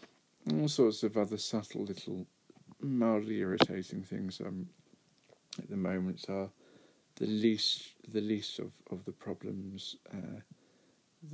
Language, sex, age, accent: English, male, 40-59, British